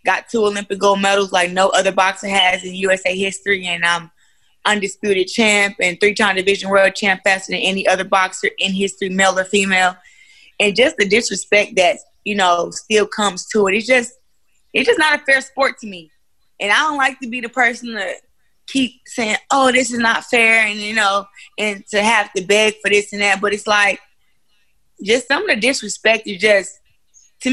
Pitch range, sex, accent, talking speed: 195-230 Hz, female, American, 200 wpm